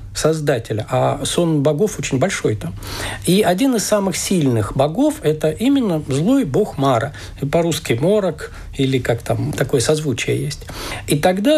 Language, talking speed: Russian, 150 wpm